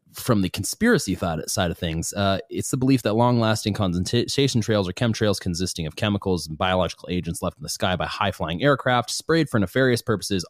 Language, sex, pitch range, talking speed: English, male, 80-110 Hz, 195 wpm